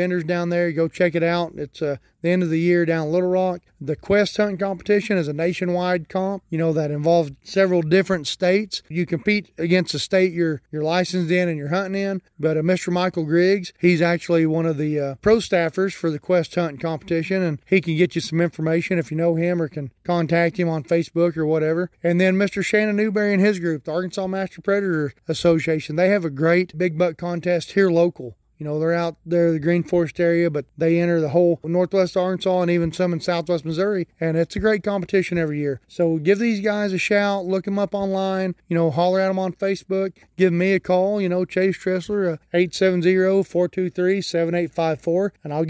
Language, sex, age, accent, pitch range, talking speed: English, male, 30-49, American, 165-190 Hz, 215 wpm